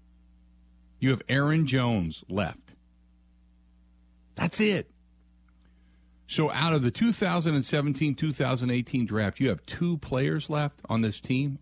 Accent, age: American, 50-69